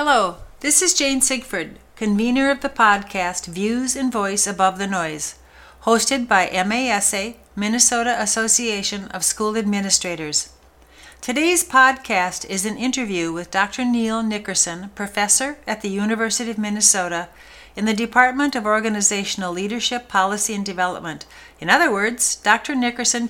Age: 60-79